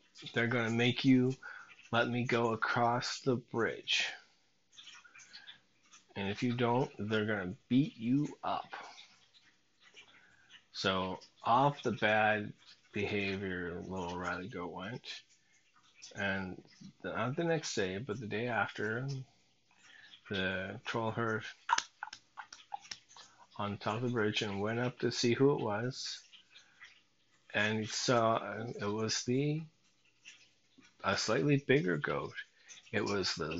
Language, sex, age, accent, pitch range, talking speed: English, male, 30-49, American, 100-125 Hz, 120 wpm